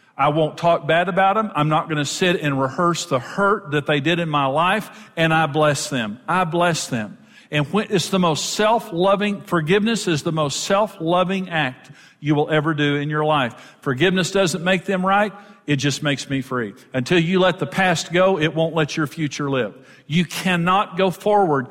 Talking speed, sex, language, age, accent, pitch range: 200 wpm, male, English, 50-69, American, 155-200 Hz